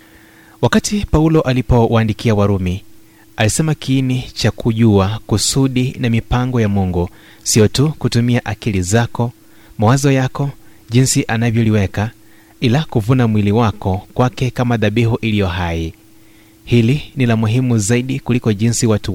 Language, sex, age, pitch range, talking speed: Swahili, male, 30-49, 105-125 Hz, 120 wpm